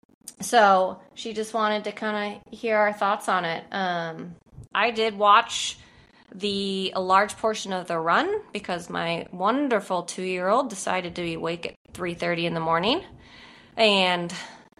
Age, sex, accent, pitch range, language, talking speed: 20-39, female, American, 180-230 Hz, English, 150 wpm